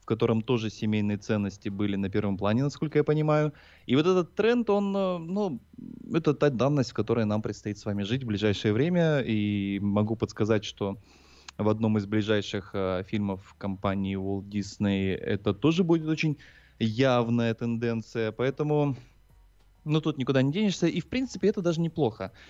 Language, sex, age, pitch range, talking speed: Russian, male, 20-39, 105-140 Hz, 165 wpm